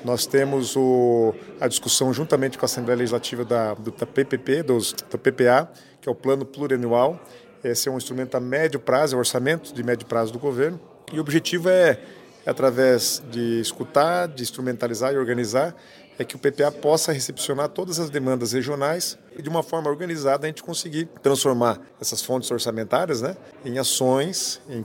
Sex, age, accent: male, 40-59, Brazilian